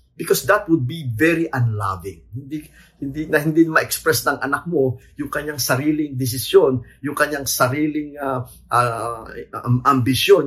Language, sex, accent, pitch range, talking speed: English, male, Filipino, 105-140 Hz, 150 wpm